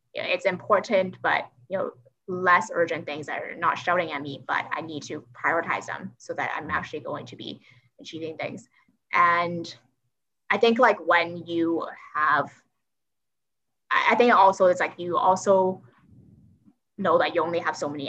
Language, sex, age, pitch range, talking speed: English, female, 20-39, 150-190 Hz, 165 wpm